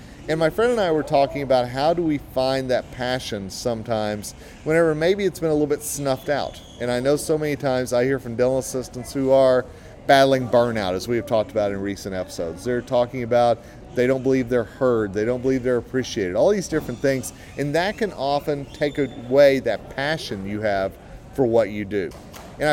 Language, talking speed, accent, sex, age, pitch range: English, 210 wpm, American, male, 40-59, 120-155 Hz